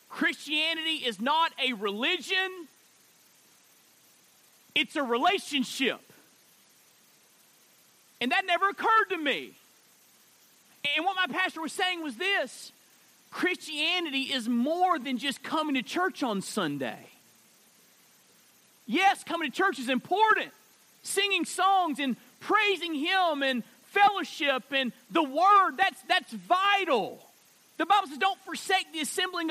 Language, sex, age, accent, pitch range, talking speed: English, male, 40-59, American, 225-360 Hz, 120 wpm